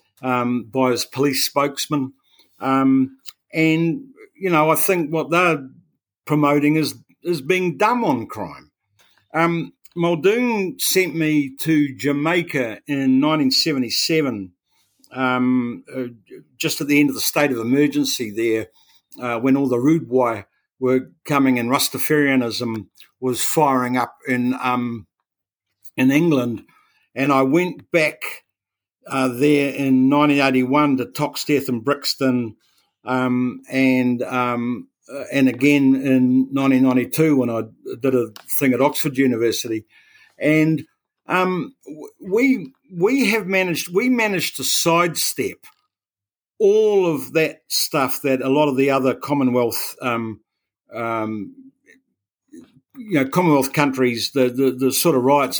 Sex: male